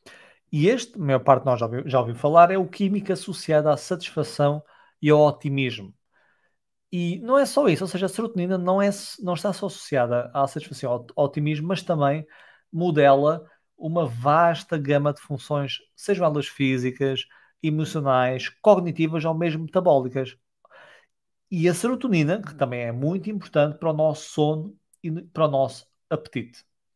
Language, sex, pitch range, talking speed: Portuguese, male, 135-180 Hz, 160 wpm